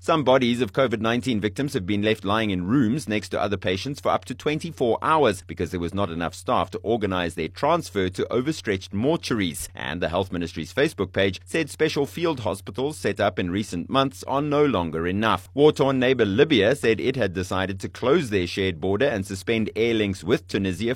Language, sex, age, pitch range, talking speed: English, male, 30-49, 95-135 Hz, 200 wpm